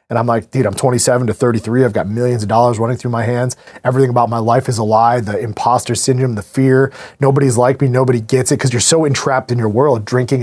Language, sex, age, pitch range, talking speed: English, male, 30-49, 120-155 Hz, 245 wpm